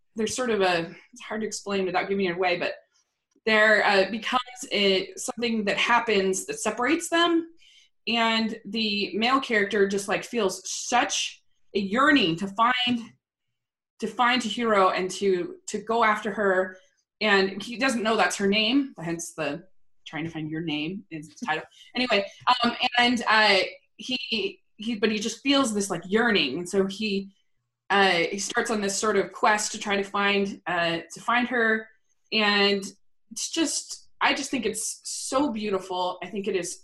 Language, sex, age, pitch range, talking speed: English, female, 20-39, 195-235 Hz, 175 wpm